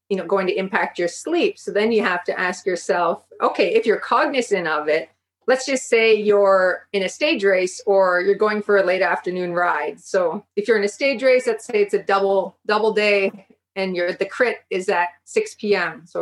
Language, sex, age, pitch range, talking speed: English, female, 30-49, 180-225 Hz, 220 wpm